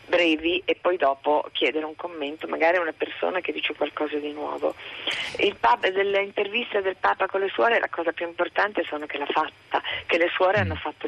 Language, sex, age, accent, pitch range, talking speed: Italian, female, 40-59, native, 150-180 Hz, 205 wpm